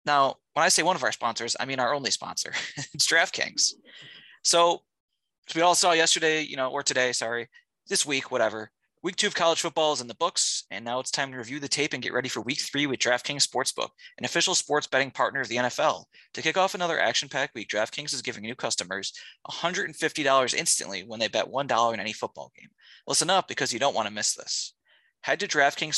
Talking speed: 225 wpm